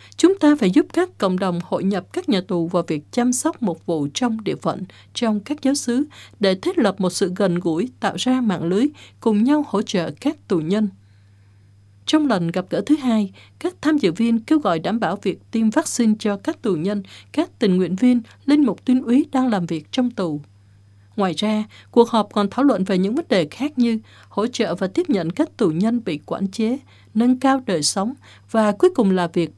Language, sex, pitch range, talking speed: Vietnamese, female, 180-260 Hz, 225 wpm